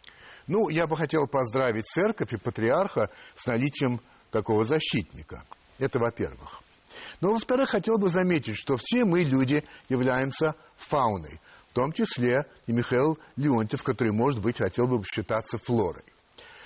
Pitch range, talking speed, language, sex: 110-160 Hz, 135 wpm, Russian, male